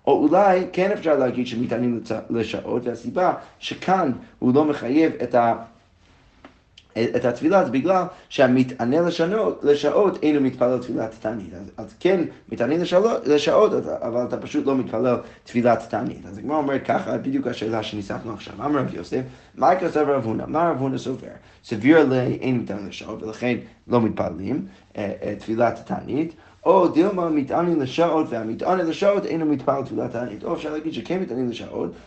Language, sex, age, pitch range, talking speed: Hebrew, male, 30-49, 115-155 Hz, 150 wpm